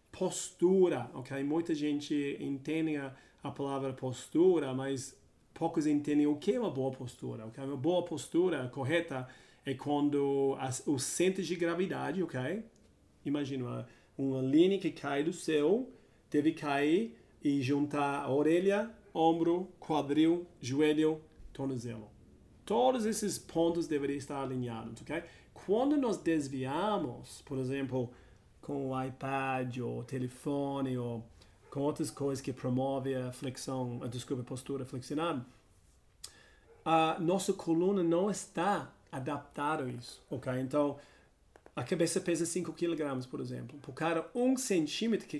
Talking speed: 135 wpm